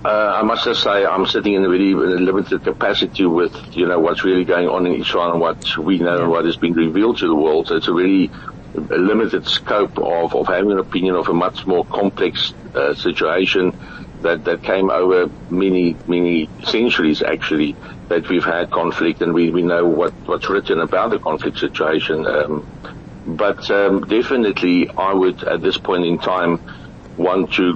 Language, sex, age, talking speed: English, male, 60-79, 190 wpm